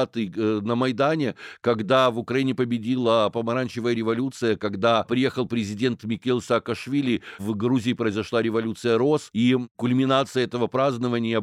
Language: Ukrainian